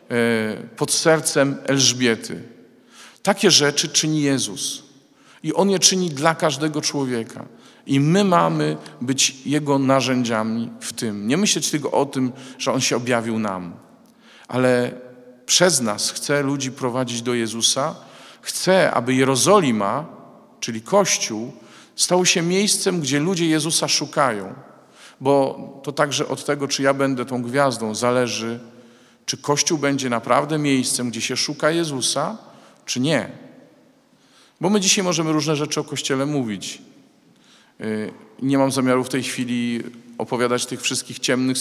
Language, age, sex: Polish, 50-69, male